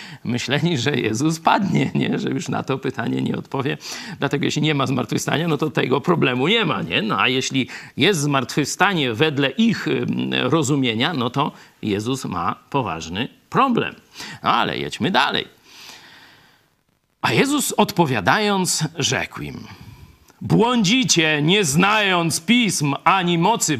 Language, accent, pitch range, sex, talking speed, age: Polish, native, 135-215 Hz, male, 125 wpm, 50-69